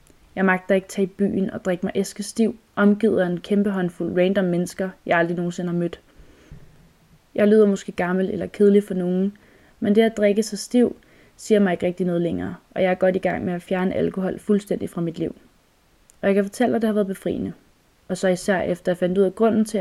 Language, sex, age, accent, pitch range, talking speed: Danish, female, 20-39, native, 180-215 Hz, 235 wpm